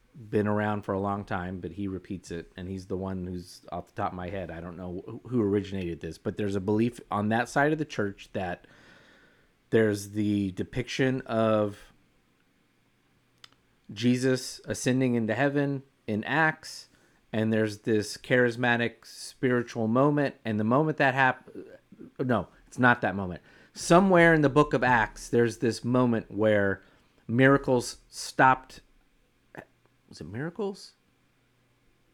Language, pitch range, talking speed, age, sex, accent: English, 100-130 Hz, 150 wpm, 30-49, male, American